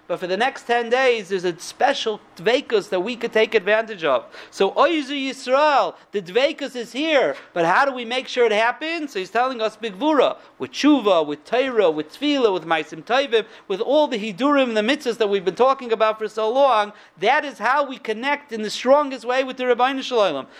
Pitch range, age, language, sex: 205-265 Hz, 50-69, English, male